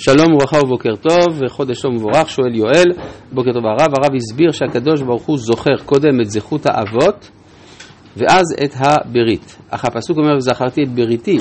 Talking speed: 160 wpm